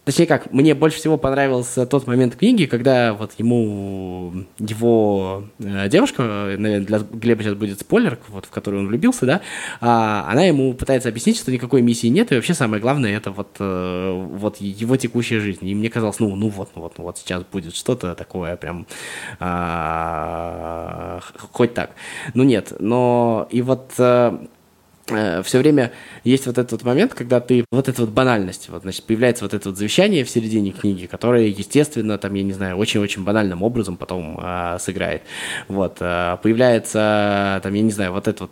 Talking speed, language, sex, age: 180 wpm, Russian, male, 20-39